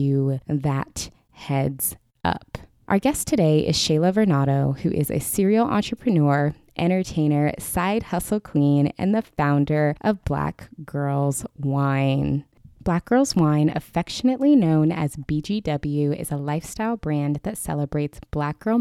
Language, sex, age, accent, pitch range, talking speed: English, female, 20-39, American, 145-175 Hz, 130 wpm